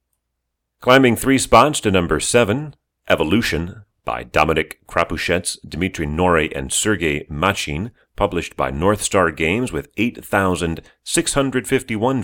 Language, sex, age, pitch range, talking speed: English, male, 40-59, 75-105 Hz, 110 wpm